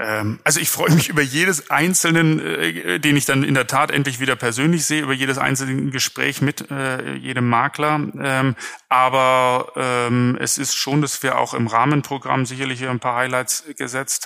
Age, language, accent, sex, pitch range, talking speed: 30-49, German, German, male, 120-140 Hz, 165 wpm